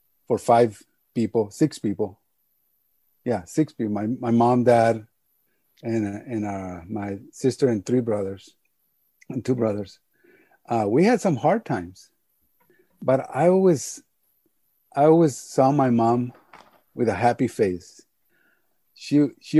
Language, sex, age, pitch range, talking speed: English, male, 50-69, 115-150 Hz, 130 wpm